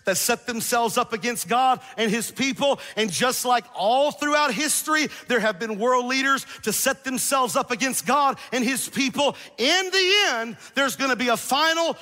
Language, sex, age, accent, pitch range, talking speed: English, male, 50-69, American, 210-265 Hz, 185 wpm